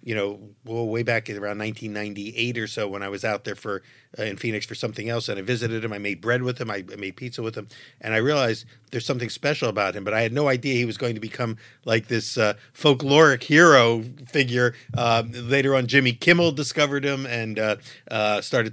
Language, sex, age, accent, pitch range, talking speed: English, male, 50-69, American, 115-135 Hz, 230 wpm